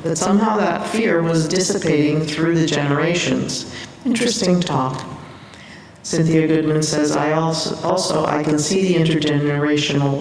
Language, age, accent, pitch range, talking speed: English, 40-59, American, 145-180 Hz, 130 wpm